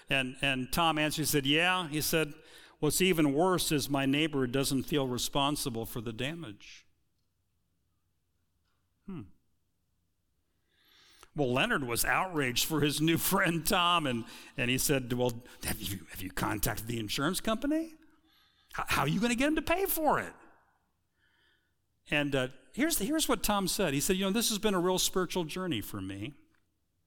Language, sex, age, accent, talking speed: English, male, 50-69, American, 170 wpm